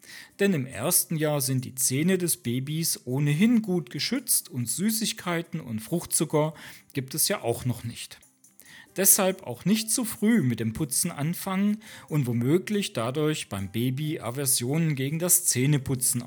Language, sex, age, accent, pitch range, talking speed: German, male, 40-59, German, 125-185 Hz, 150 wpm